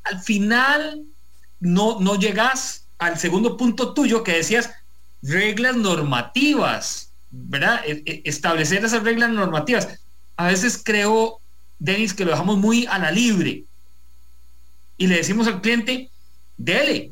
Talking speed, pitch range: 125 wpm, 150-230 Hz